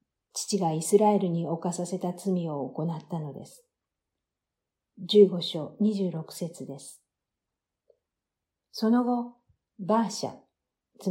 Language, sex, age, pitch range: Japanese, female, 50-69, 160-205 Hz